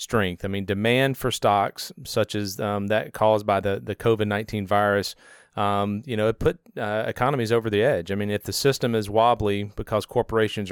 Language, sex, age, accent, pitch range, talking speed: English, male, 40-59, American, 100-120 Hz, 195 wpm